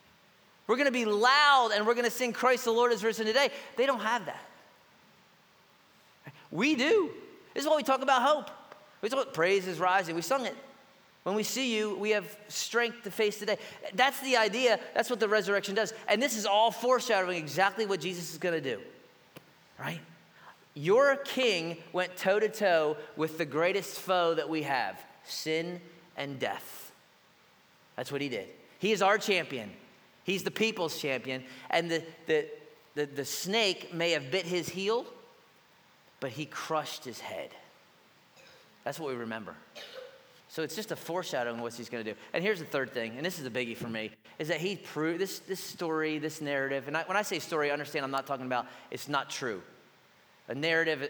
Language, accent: English, American